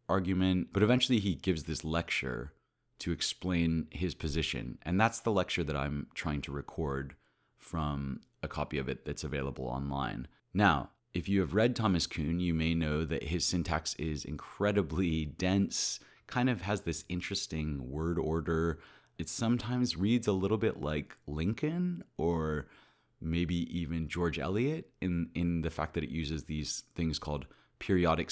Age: 30-49